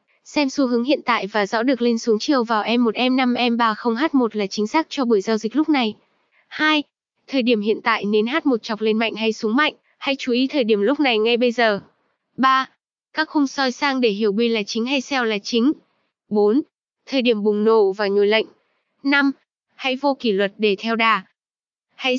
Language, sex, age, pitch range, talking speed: Vietnamese, female, 10-29, 220-270 Hz, 225 wpm